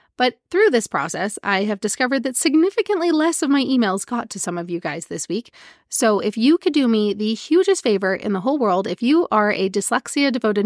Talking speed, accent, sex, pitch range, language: 225 wpm, American, female, 200-270 Hz, English